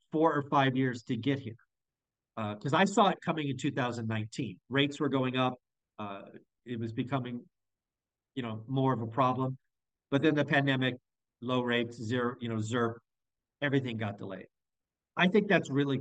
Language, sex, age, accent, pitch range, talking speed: English, male, 50-69, American, 115-150 Hz, 170 wpm